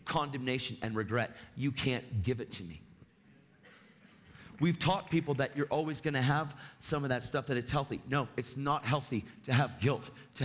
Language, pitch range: English, 120-160 Hz